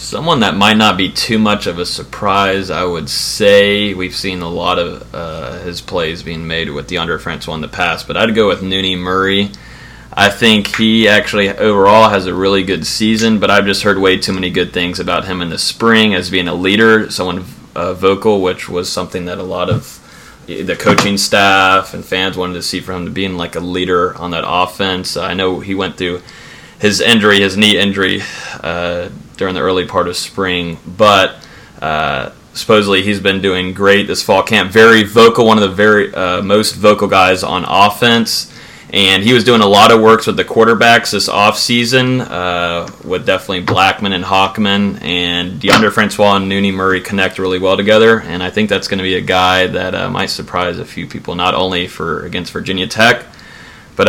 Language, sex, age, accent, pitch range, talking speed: English, male, 20-39, American, 90-105 Hz, 200 wpm